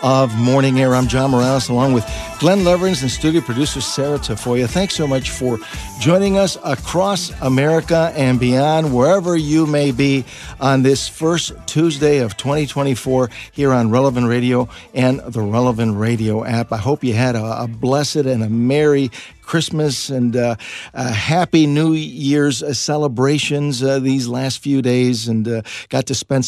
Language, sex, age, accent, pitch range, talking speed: English, male, 50-69, American, 120-150 Hz, 155 wpm